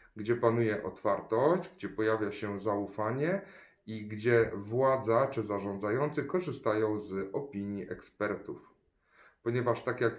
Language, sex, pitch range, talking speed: Polish, male, 100-120 Hz, 110 wpm